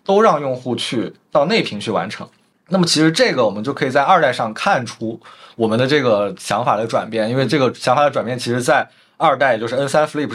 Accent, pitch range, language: native, 110-150 Hz, Chinese